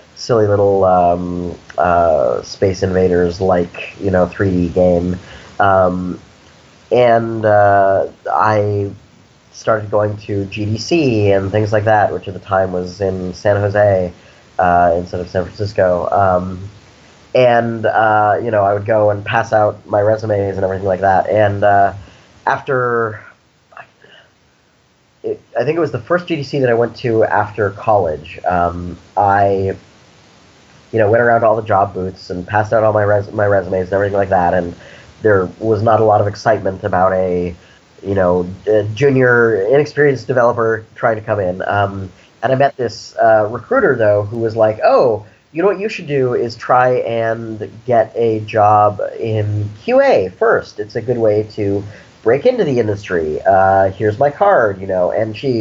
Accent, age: American, 30-49